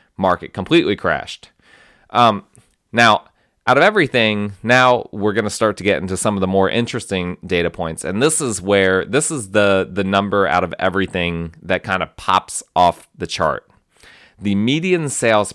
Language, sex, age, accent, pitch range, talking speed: English, male, 30-49, American, 100-120 Hz, 175 wpm